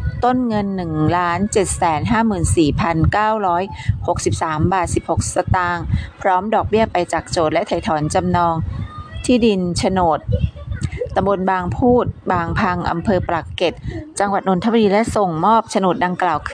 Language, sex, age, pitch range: Thai, female, 30-49, 155-205 Hz